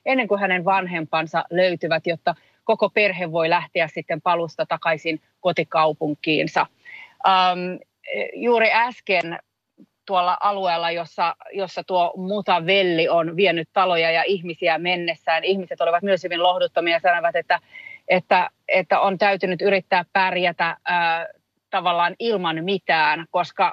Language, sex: Finnish, female